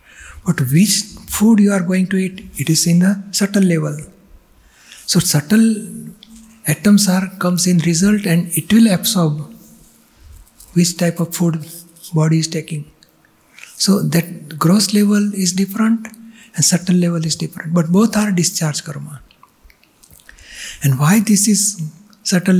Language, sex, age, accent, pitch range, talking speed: Gujarati, male, 60-79, native, 160-190 Hz, 145 wpm